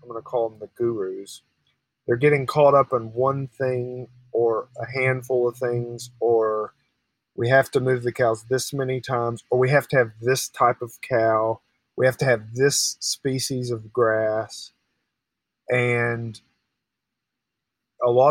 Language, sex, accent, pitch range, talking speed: English, male, American, 115-135 Hz, 160 wpm